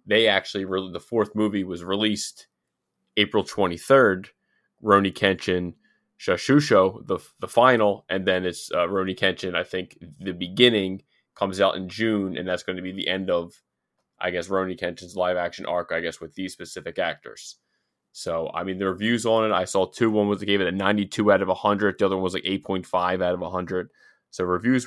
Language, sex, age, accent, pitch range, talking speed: English, male, 20-39, American, 95-110 Hz, 195 wpm